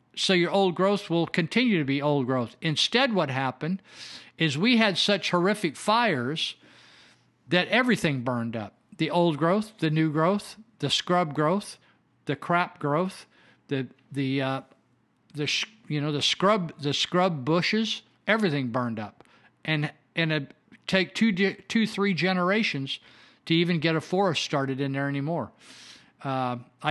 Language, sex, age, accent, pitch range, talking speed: English, male, 50-69, American, 140-185 Hz, 150 wpm